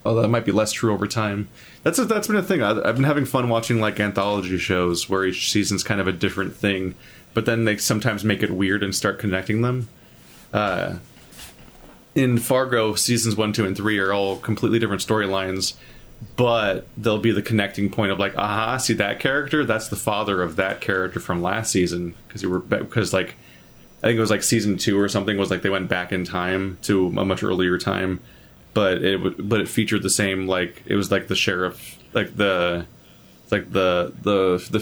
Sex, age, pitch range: male, 20-39, 90-110 Hz